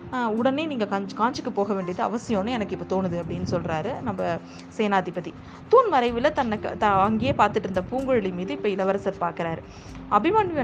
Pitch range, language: 190-265 Hz, Tamil